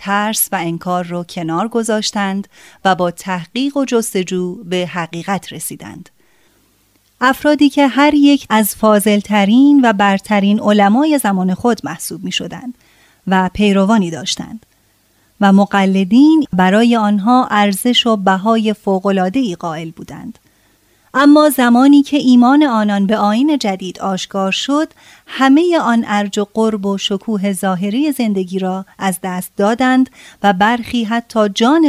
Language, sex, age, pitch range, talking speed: Persian, female, 30-49, 190-245 Hz, 130 wpm